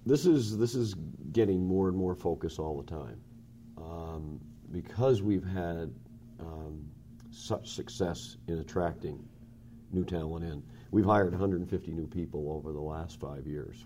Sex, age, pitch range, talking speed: male, 50-69, 80-115 Hz, 145 wpm